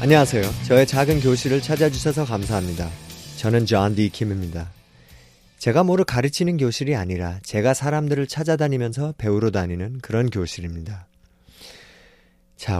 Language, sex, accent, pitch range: Korean, male, native, 95-145 Hz